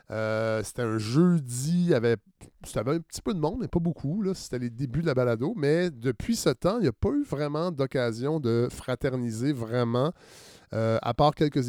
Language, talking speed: French, 205 wpm